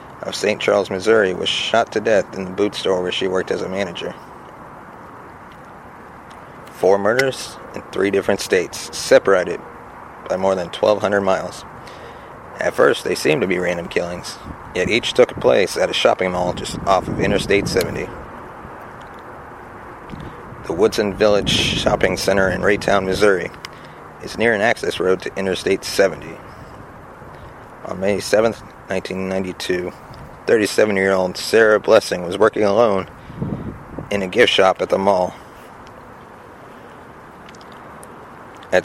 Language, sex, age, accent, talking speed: English, male, 30-49, American, 130 wpm